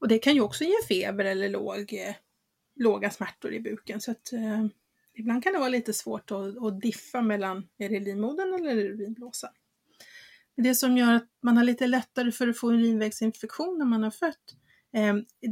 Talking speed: 195 wpm